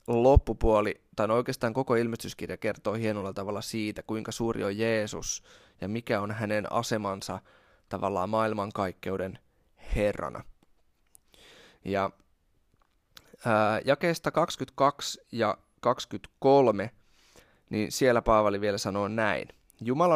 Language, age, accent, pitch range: Finnish, 20-39, native, 100-125 Hz